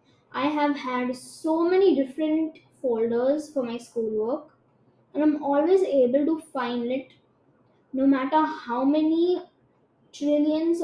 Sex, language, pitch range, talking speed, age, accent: female, English, 245-305 Hz, 120 wpm, 20-39, Indian